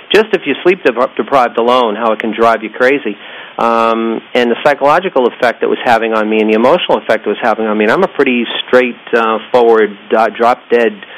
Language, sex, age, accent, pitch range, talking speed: English, male, 40-59, American, 110-125 Hz, 200 wpm